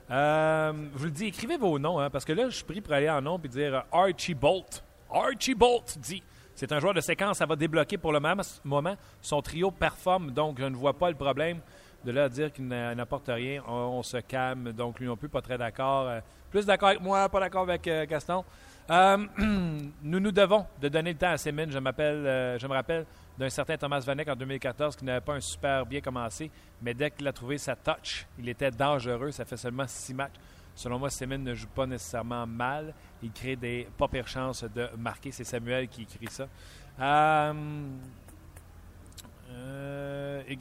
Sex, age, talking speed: male, 40-59, 215 wpm